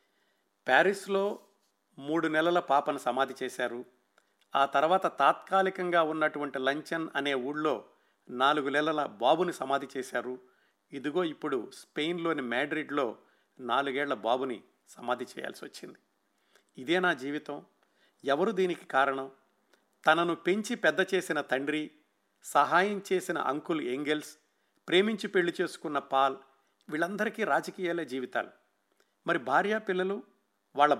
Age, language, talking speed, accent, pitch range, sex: 50-69, Telugu, 100 wpm, native, 135-190 Hz, male